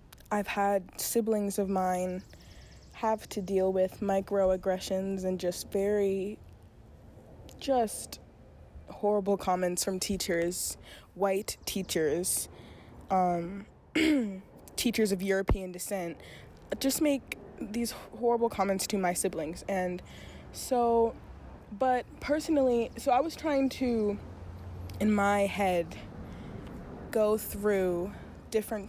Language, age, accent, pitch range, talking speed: English, 20-39, American, 185-235 Hz, 100 wpm